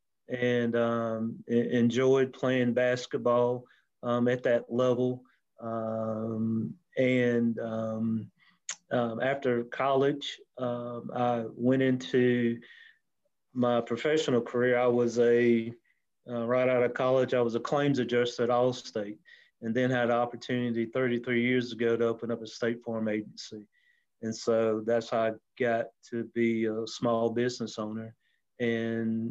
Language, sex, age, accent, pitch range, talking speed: English, male, 30-49, American, 115-125 Hz, 135 wpm